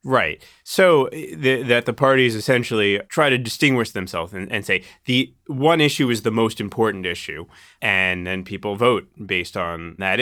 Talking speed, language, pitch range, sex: 165 wpm, English, 90-120 Hz, male